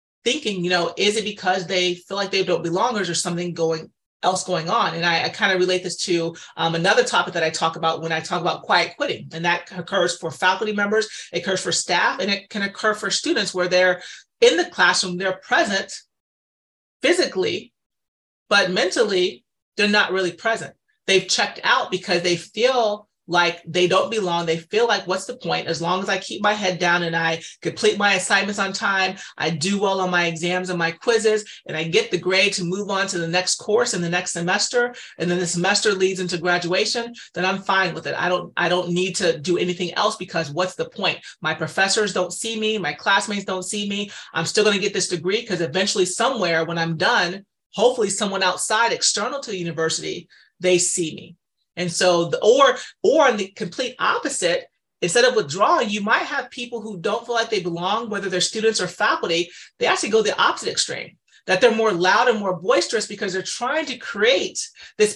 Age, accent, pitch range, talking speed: 30-49, American, 175-215 Hz, 210 wpm